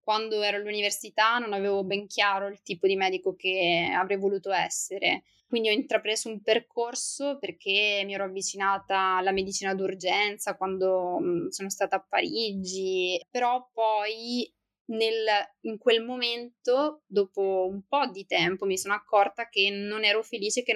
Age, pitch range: 20-39, 195-245 Hz